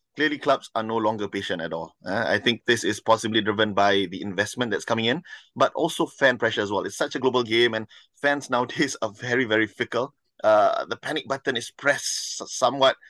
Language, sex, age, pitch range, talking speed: English, male, 20-39, 110-135 Hz, 210 wpm